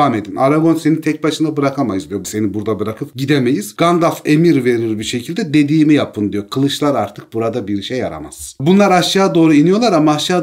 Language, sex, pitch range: Turkish, male, 120-160 Hz